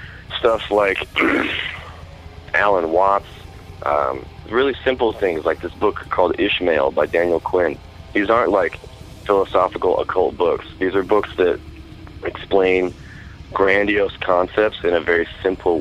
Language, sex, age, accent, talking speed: English, male, 30-49, American, 125 wpm